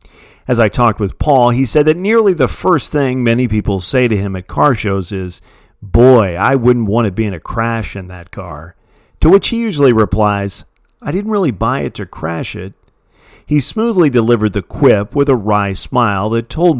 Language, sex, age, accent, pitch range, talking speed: English, male, 40-59, American, 100-130 Hz, 205 wpm